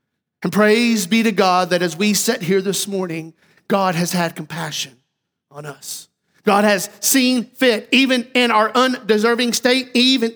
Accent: American